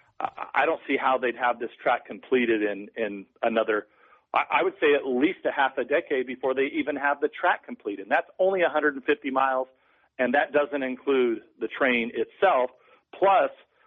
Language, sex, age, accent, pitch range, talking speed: English, male, 50-69, American, 120-150 Hz, 175 wpm